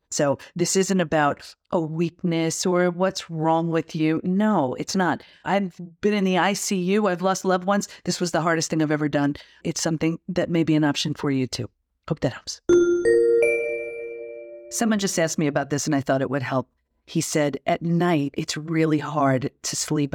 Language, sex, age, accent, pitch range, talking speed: English, female, 40-59, American, 145-200 Hz, 195 wpm